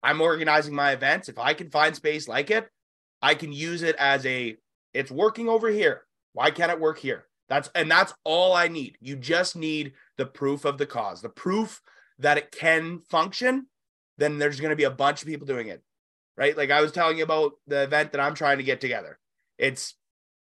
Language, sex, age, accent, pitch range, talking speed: English, male, 30-49, American, 135-165 Hz, 210 wpm